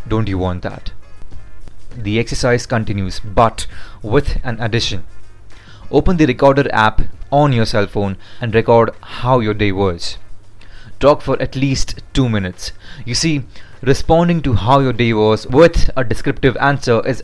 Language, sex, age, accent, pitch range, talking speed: English, male, 30-49, Indian, 100-125 Hz, 155 wpm